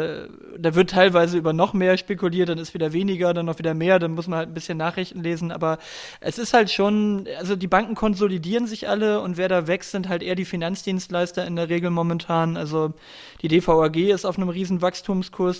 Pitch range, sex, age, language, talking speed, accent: 165-185 Hz, male, 20-39, German, 210 wpm, German